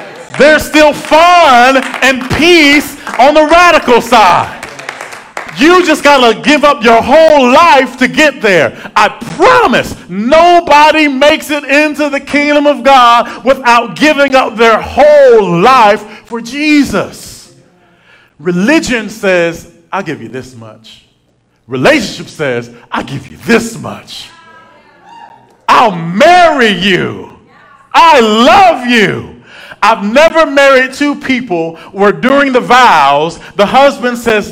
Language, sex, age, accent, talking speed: English, male, 40-59, American, 125 wpm